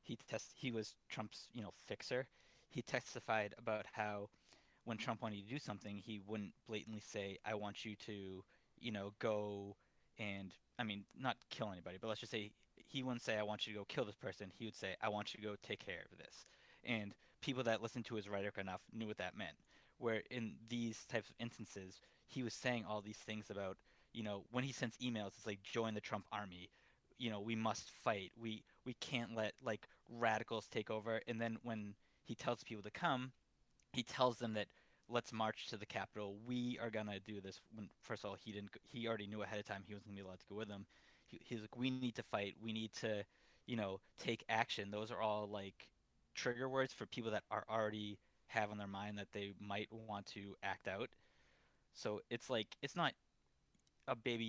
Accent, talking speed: American, 220 wpm